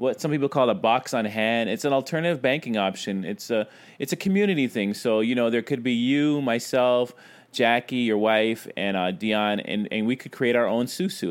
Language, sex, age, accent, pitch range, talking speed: English, male, 30-49, American, 110-135 Hz, 220 wpm